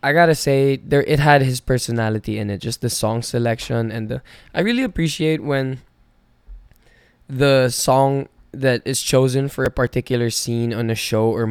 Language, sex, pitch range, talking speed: English, male, 115-130 Hz, 170 wpm